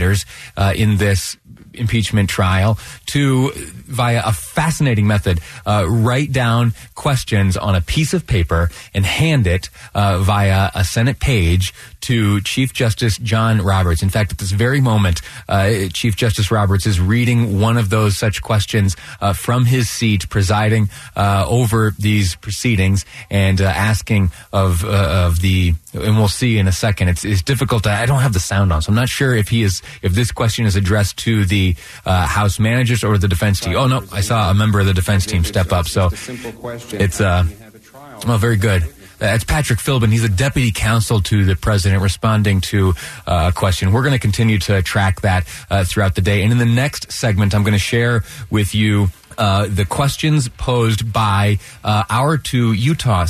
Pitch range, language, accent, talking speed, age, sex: 95-115 Hz, English, American, 185 wpm, 30-49, male